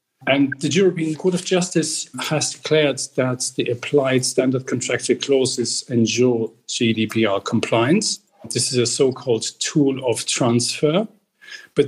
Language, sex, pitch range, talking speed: English, male, 125-160 Hz, 125 wpm